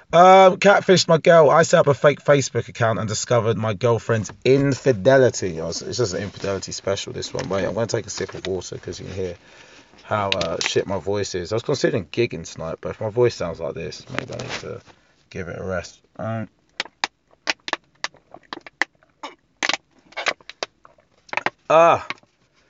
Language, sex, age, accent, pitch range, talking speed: English, male, 30-49, British, 110-140 Hz, 165 wpm